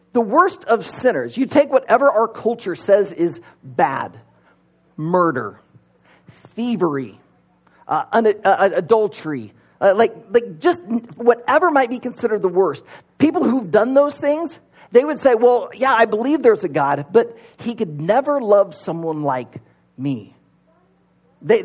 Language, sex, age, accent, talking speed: English, male, 40-59, American, 140 wpm